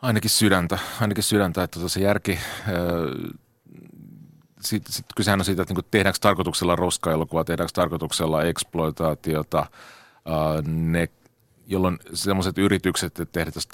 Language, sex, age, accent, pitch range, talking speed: Finnish, male, 40-59, native, 80-90 Hz, 100 wpm